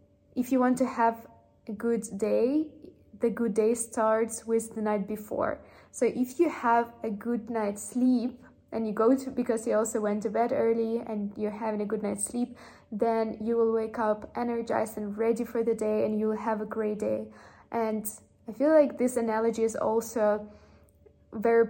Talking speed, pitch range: 190 wpm, 215-235 Hz